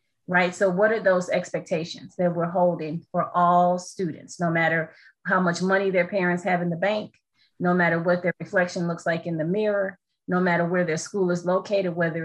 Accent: American